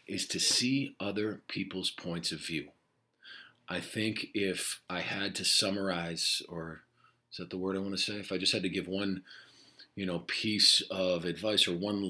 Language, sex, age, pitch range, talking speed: Spanish, male, 40-59, 95-115 Hz, 190 wpm